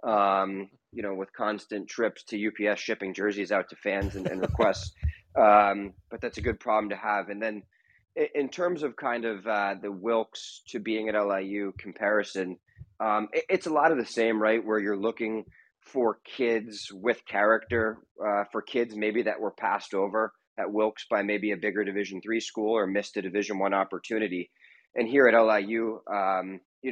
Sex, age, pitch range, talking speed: male, 20-39, 100-110 Hz, 190 wpm